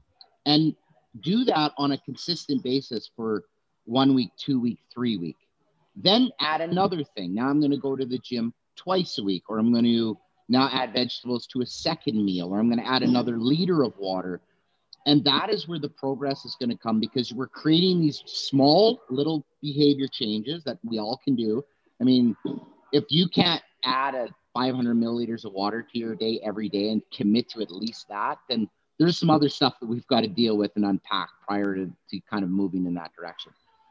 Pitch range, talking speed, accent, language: 110-150 Hz, 205 wpm, American, English